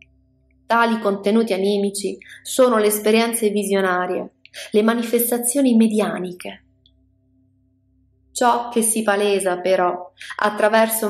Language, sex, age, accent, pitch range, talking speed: Italian, female, 20-39, native, 180-220 Hz, 85 wpm